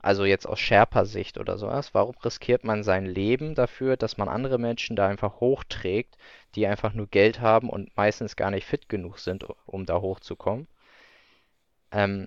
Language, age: German, 20-39